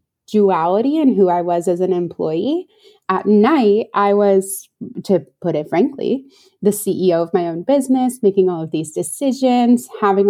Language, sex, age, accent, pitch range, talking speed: English, female, 20-39, American, 180-215 Hz, 165 wpm